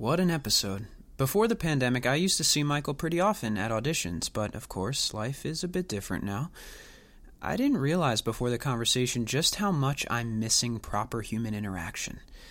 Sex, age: male, 20-39